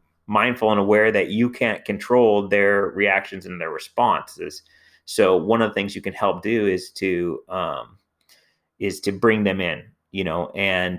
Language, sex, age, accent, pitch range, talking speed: English, male, 30-49, American, 90-105 Hz, 175 wpm